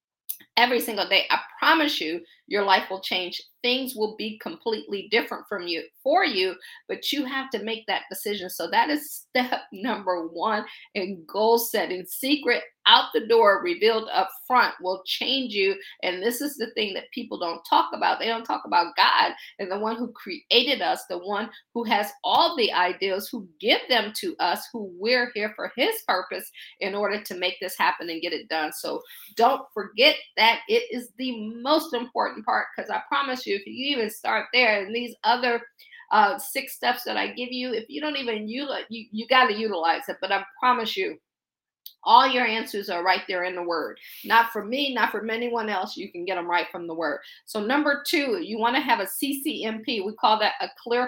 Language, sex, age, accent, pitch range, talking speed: English, female, 50-69, American, 200-270 Hz, 205 wpm